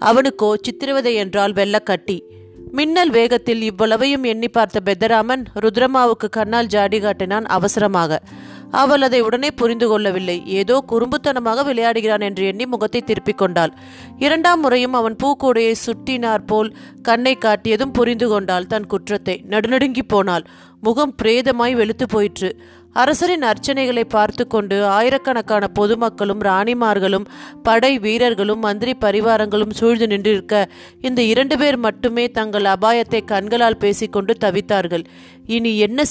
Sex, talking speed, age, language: female, 105 wpm, 30-49, Tamil